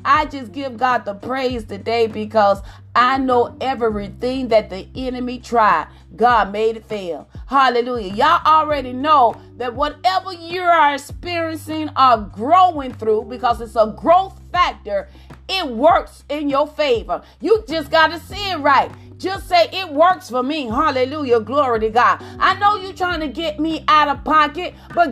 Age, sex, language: 40-59, female, English